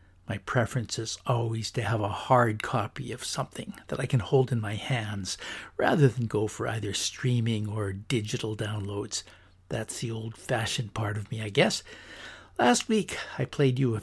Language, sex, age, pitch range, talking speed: English, male, 60-79, 105-130 Hz, 175 wpm